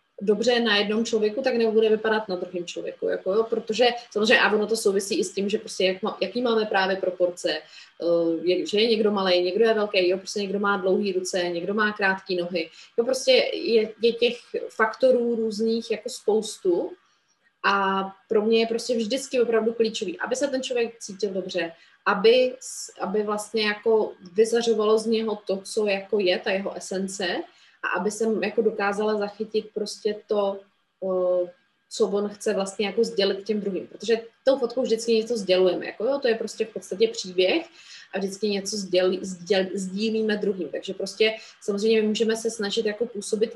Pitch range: 200-235 Hz